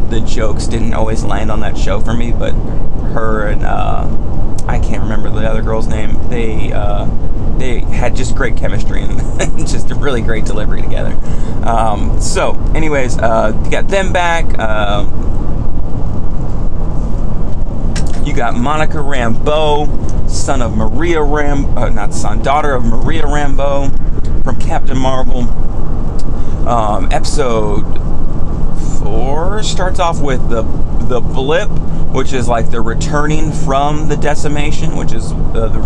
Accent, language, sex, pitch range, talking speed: American, English, male, 110-135 Hz, 140 wpm